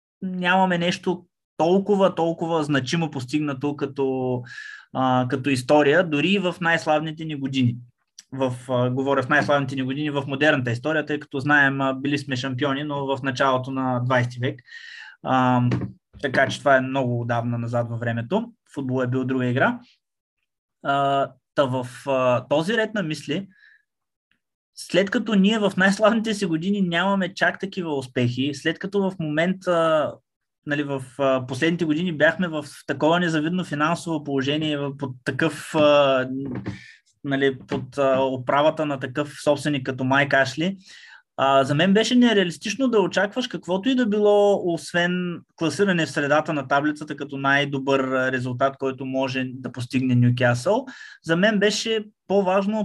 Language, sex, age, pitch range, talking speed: Bulgarian, male, 20-39, 135-175 Hz, 140 wpm